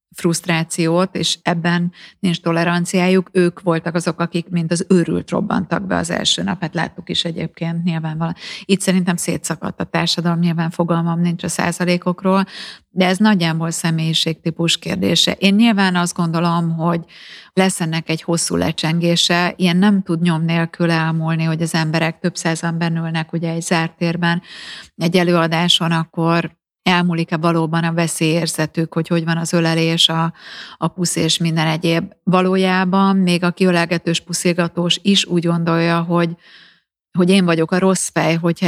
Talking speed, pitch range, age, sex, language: 150 wpm, 165-175 Hz, 30-49, female, Hungarian